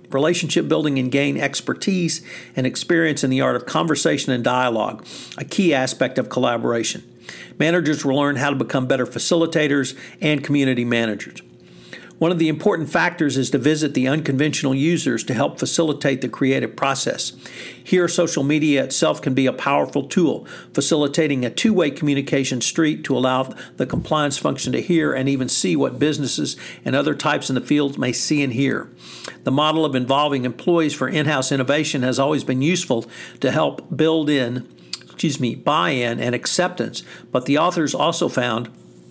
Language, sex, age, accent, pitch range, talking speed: English, male, 50-69, American, 125-155 Hz, 165 wpm